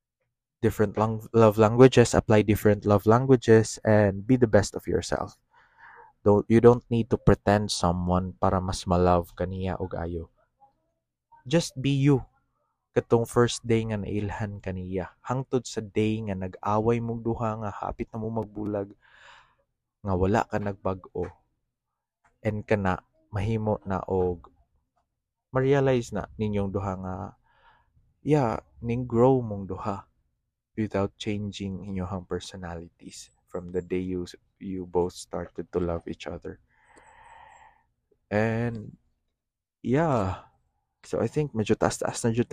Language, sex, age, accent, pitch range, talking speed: English, male, 20-39, Filipino, 95-115 Hz, 130 wpm